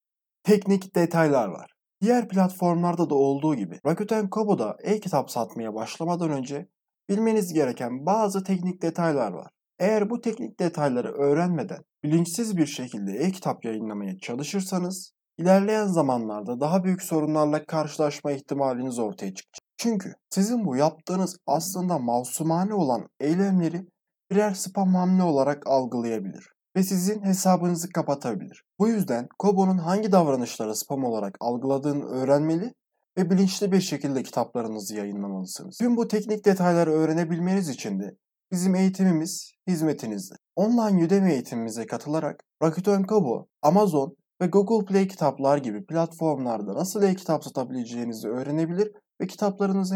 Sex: male